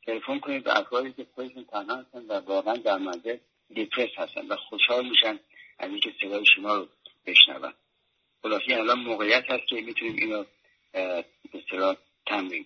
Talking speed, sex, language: 170 wpm, male, English